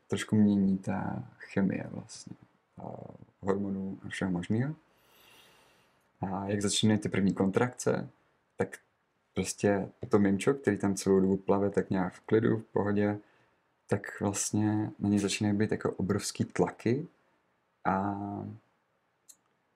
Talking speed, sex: 125 wpm, male